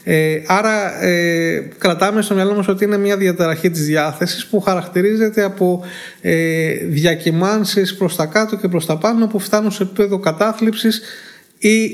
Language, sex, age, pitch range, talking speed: Greek, male, 20-39, 160-205 Hz, 155 wpm